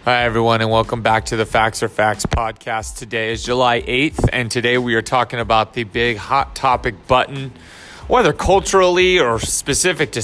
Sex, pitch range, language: male, 115-150 Hz, English